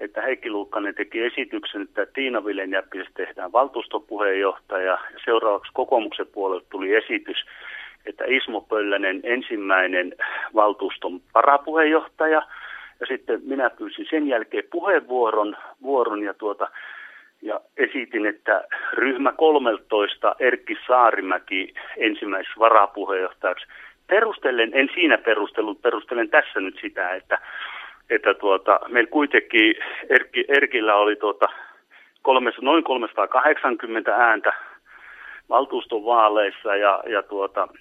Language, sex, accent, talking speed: Finnish, male, native, 100 wpm